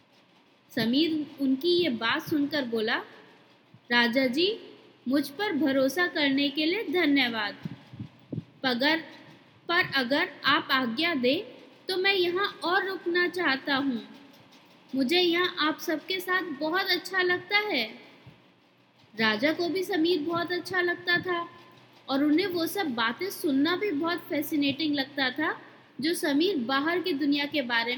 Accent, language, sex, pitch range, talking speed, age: native, Hindi, female, 280-355 Hz, 135 wpm, 20-39